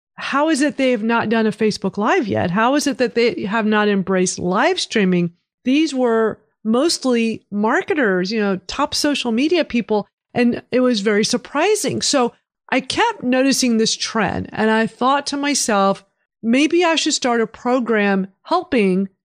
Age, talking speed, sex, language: 40-59, 170 wpm, female, English